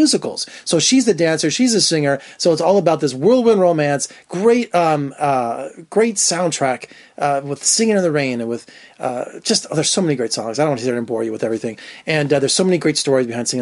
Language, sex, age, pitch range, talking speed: English, male, 30-49, 135-185 Hz, 245 wpm